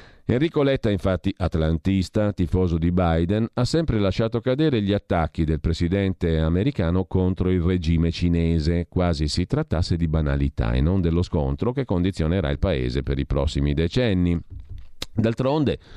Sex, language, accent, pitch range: male, Italian, native, 80-110 Hz